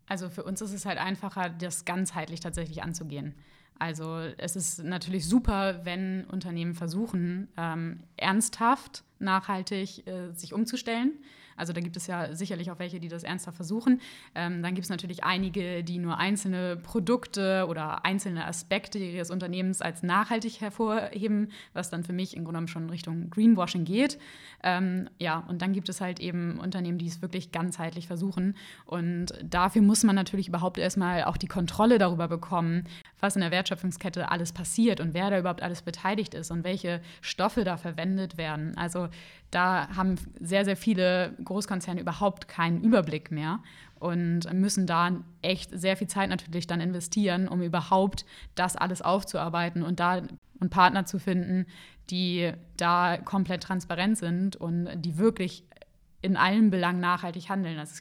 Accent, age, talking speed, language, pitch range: German, 20-39, 165 wpm, German, 170-195 Hz